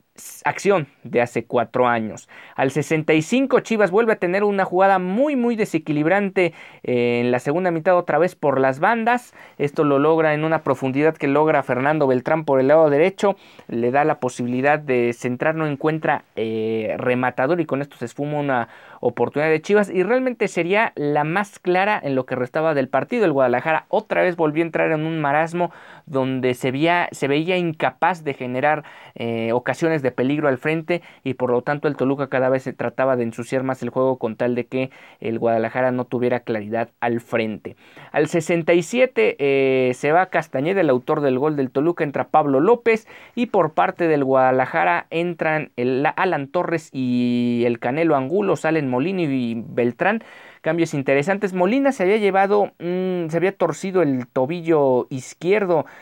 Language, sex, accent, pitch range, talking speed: Spanish, male, Mexican, 130-175 Hz, 175 wpm